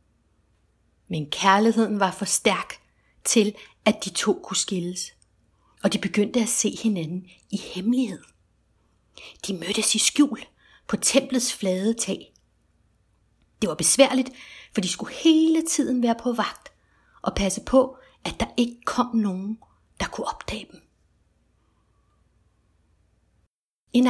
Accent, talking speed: native, 125 wpm